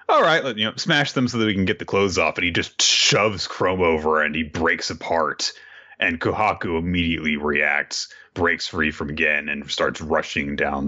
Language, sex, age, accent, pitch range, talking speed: English, male, 30-49, American, 80-105 Hz, 205 wpm